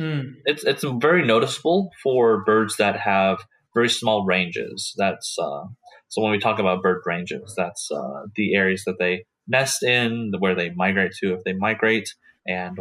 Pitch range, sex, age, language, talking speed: 95-115 Hz, male, 20-39, English, 170 wpm